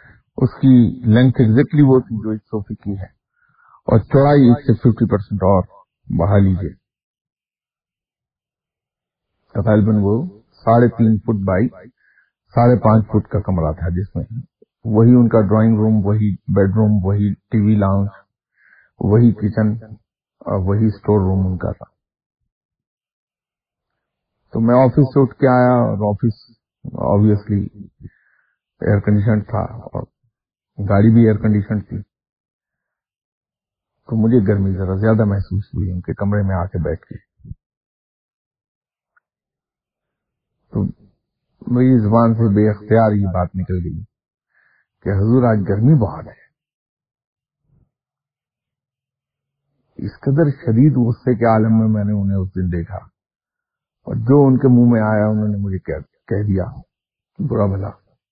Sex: male